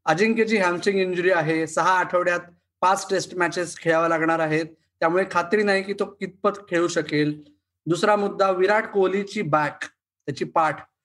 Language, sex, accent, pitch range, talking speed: Marathi, male, native, 170-215 Hz, 150 wpm